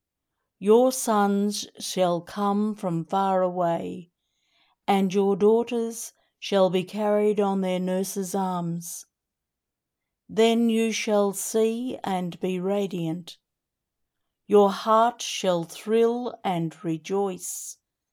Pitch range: 180-220 Hz